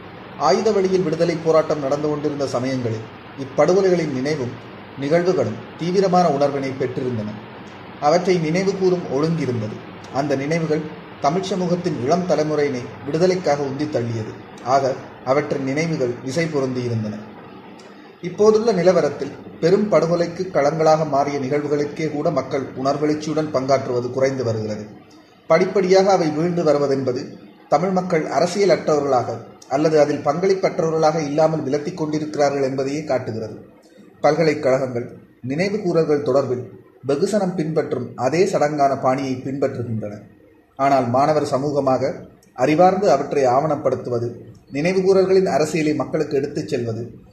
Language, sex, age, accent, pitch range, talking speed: Tamil, male, 30-49, native, 130-165 Hz, 100 wpm